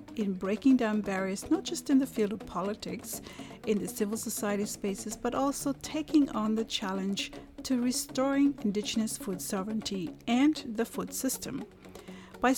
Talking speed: 155 wpm